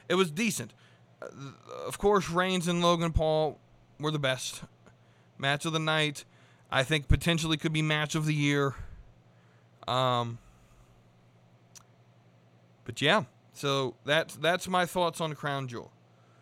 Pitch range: 120-155 Hz